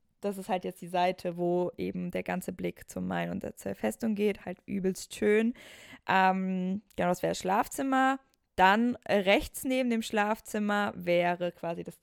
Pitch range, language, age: 180-220 Hz, German, 20-39